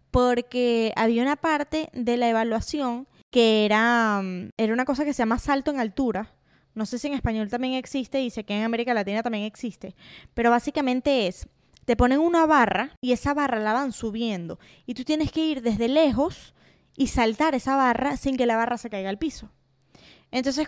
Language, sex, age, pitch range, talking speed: Spanish, female, 10-29, 225-280 Hz, 190 wpm